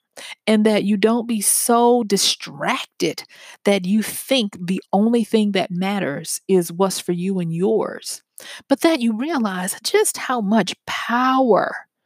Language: English